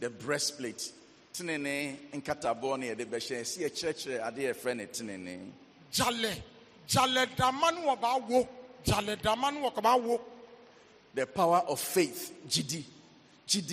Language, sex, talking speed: English, male, 140 wpm